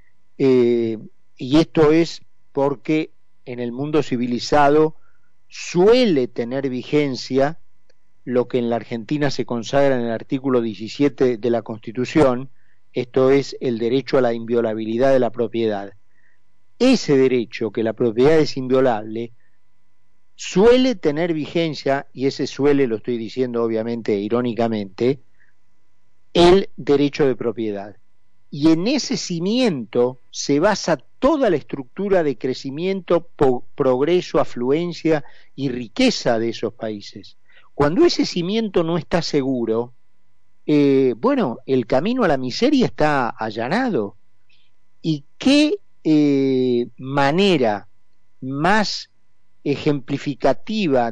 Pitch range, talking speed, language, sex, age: 115-155 Hz, 115 wpm, Spanish, male, 40-59